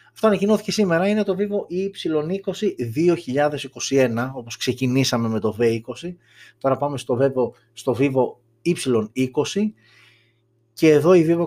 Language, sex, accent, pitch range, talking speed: Greek, male, native, 115-150 Hz, 125 wpm